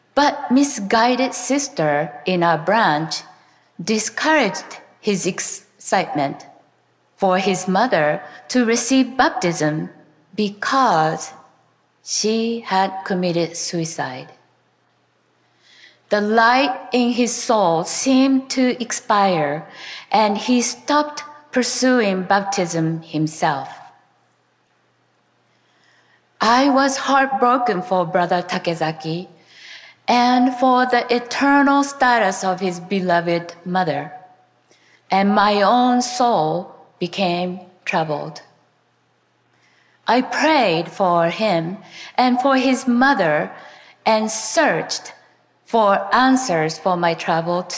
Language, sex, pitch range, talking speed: English, female, 165-245 Hz, 90 wpm